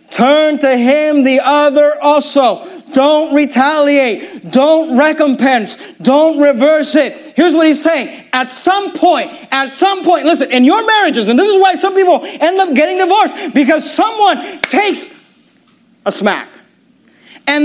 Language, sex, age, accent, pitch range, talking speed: English, male, 40-59, American, 270-345 Hz, 145 wpm